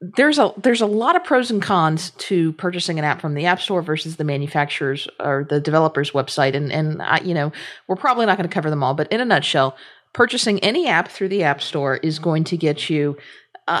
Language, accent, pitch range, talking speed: English, American, 145-185 Hz, 235 wpm